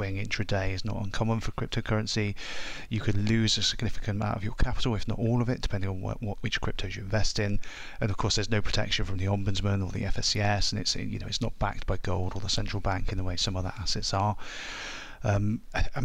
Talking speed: 230 wpm